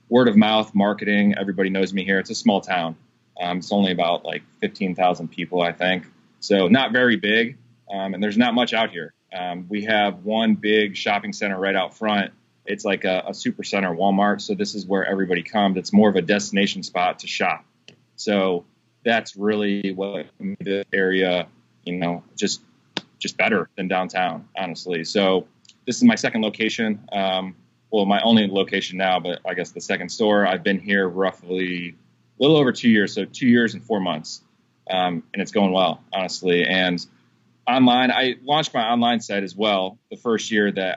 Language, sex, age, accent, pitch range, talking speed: English, male, 20-39, American, 95-110 Hz, 190 wpm